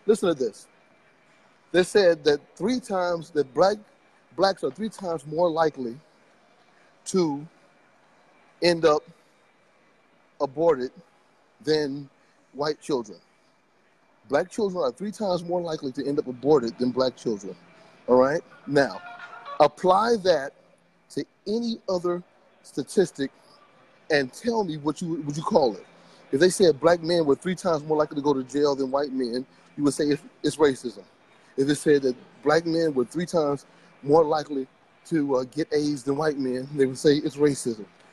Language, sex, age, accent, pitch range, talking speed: English, male, 30-49, American, 140-180 Hz, 155 wpm